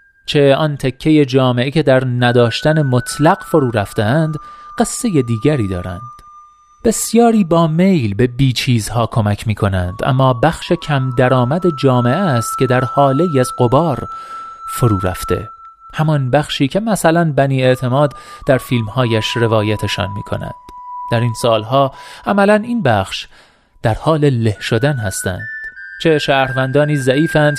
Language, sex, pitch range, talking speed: Persian, male, 120-170 Hz, 130 wpm